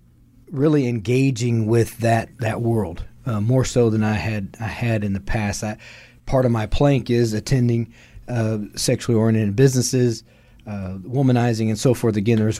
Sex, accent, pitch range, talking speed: male, American, 115-130 Hz, 160 wpm